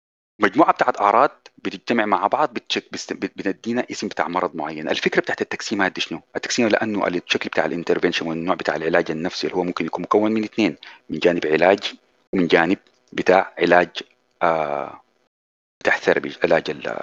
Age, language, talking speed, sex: 40-59, Arabic, 155 wpm, male